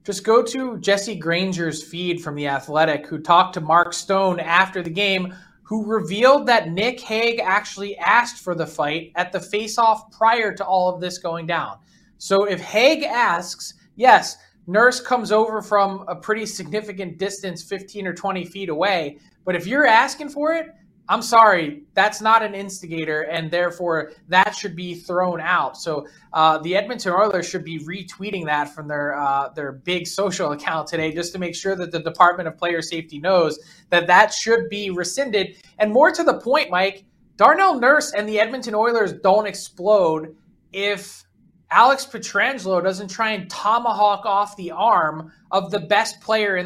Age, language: 20-39, English